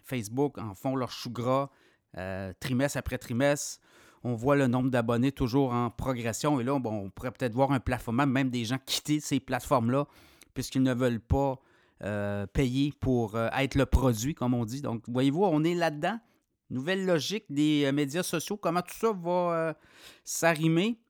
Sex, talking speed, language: male, 180 wpm, French